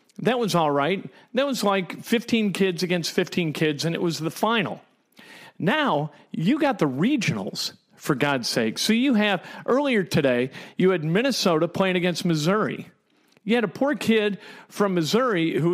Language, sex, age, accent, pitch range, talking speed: English, male, 50-69, American, 170-225 Hz, 170 wpm